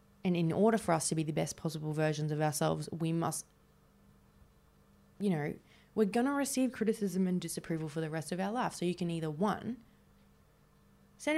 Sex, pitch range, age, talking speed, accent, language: female, 150-200 Hz, 20-39, 190 wpm, Australian, English